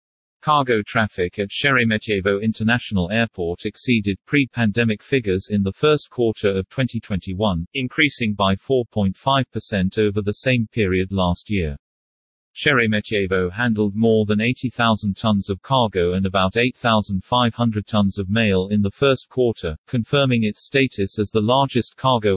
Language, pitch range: English, 100-120 Hz